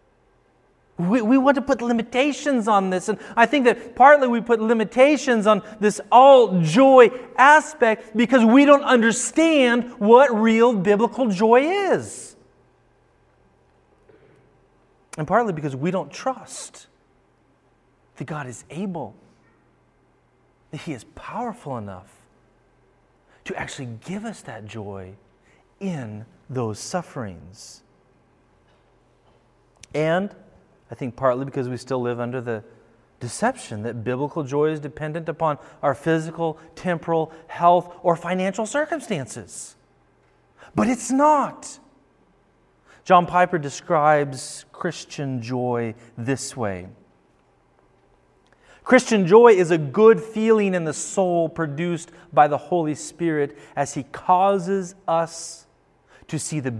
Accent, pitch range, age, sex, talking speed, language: American, 135-225 Hz, 30-49, male, 115 wpm, English